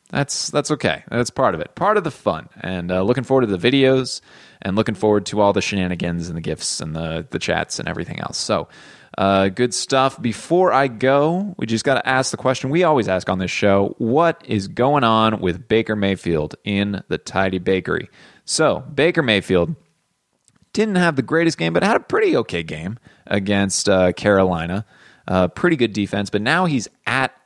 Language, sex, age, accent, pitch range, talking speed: English, male, 20-39, American, 95-125 Hz, 200 wpm